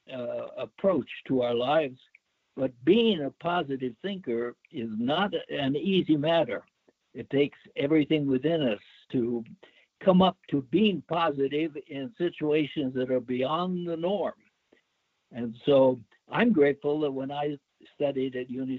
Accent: American